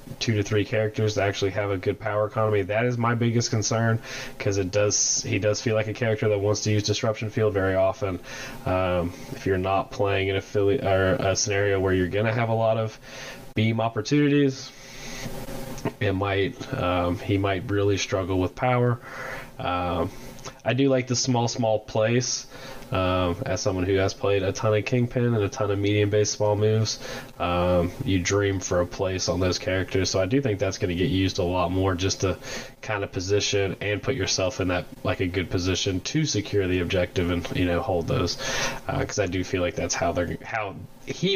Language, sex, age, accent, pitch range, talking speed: English, male, 20-39, American, 95-130 Hz, 205 wpm